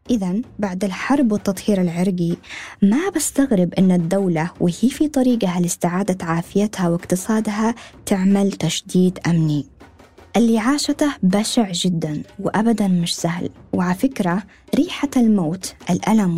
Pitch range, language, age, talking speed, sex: 185-275 Hz, Arabic, 20-39, 105 wpm, female